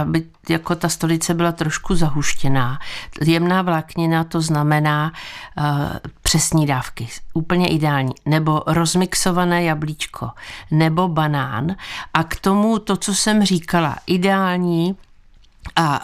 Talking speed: 110 wpm